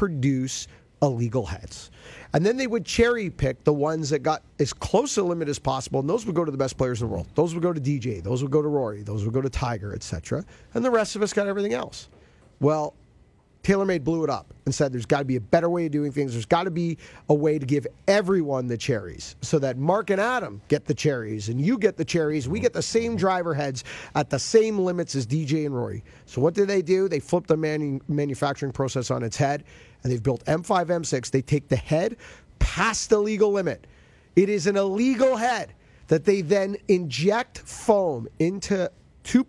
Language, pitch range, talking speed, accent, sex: English, 130-180 Hz, 225 wpm, American, male